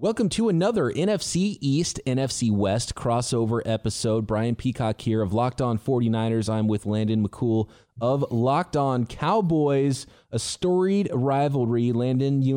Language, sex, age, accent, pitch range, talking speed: English, male, 20-39, American, 105-140 Hz, 140 wpm